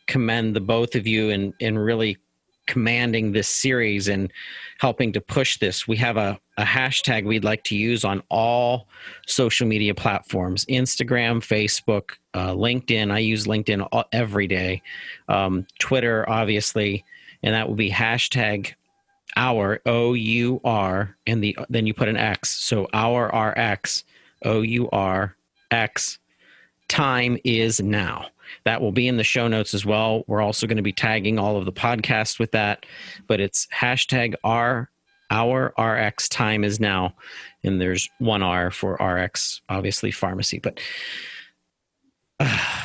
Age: 40-59